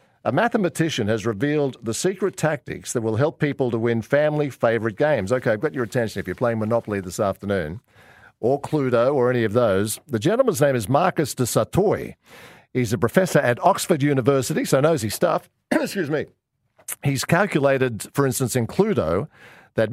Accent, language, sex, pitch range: Australian, English, male, 110-145 Hz